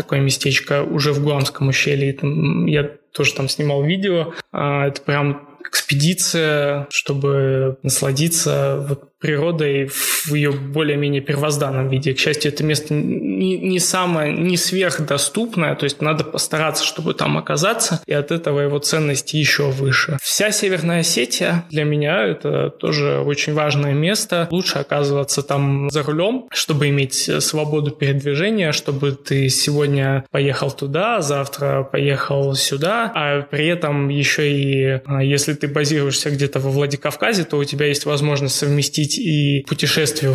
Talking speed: 135 wpm